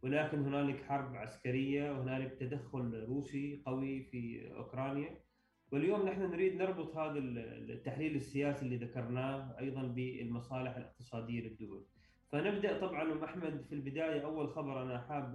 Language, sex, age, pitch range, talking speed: Arabic, male, 20-39, 125-150 Hz, 130 wpm